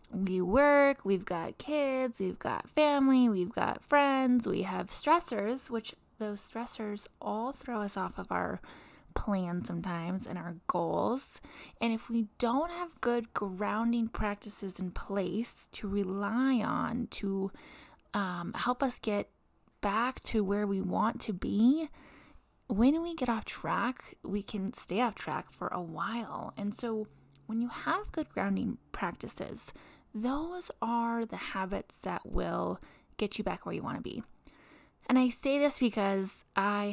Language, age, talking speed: English, 20-39, 155 wpm